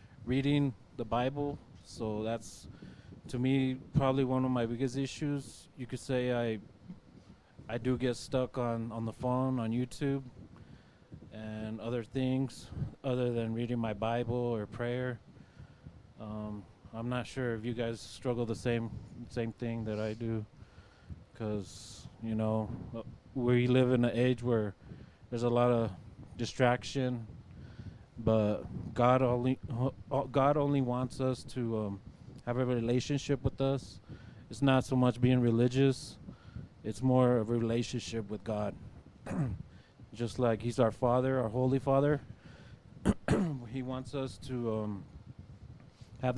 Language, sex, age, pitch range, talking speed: English, male, 20-39, 110-130 Hz, 135 wpm